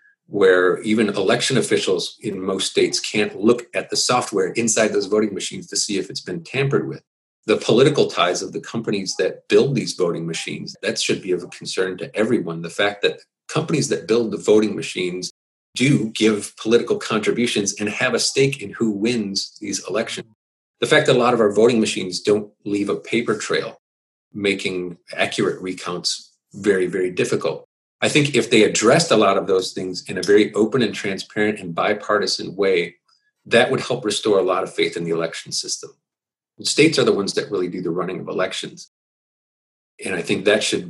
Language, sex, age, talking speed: English, male, 40-59, 190 wpm